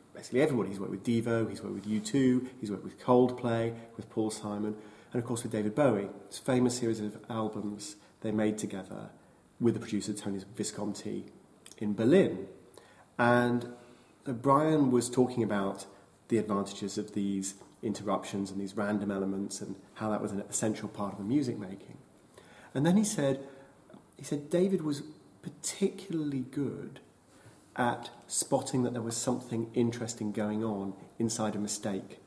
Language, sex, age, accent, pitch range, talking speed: English, male, 30-49, British, 105-130 Hz, 160 wpm